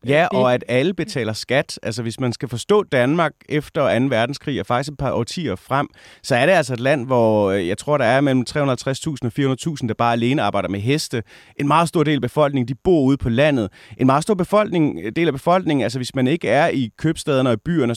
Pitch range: 105-140 Hz